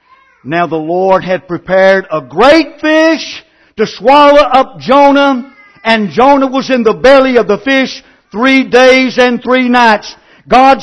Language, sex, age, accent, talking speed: English, male, 60-79, American, 150 wpm